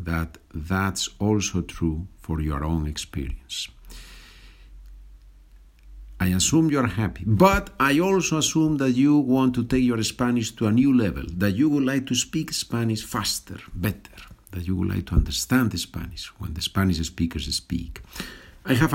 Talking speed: 160 wpm